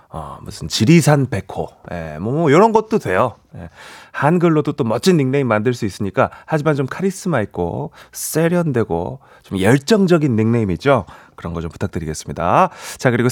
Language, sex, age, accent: Korean, male, 30-49, native